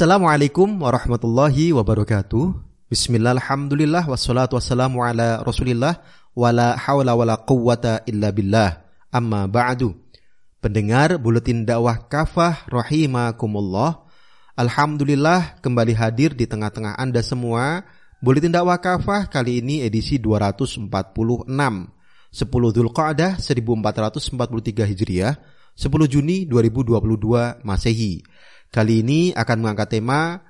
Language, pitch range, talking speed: Indonesian, 115-160 Hz, 95 wpm